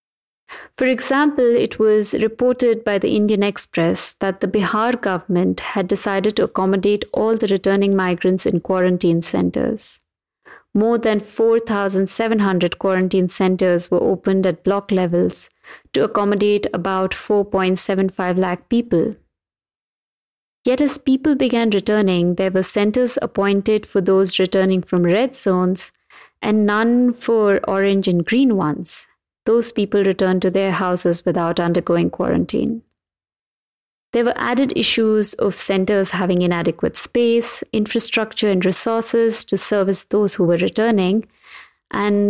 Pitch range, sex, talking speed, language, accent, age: 185-220 Hz, female, 130 wpm, English, Indian, 50-69